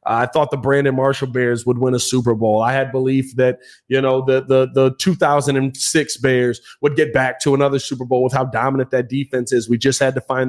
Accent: American